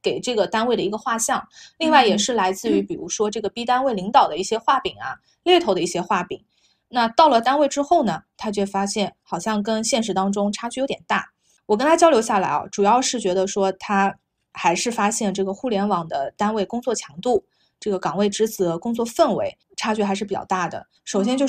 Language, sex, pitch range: Chinese, female, 195-245 Hz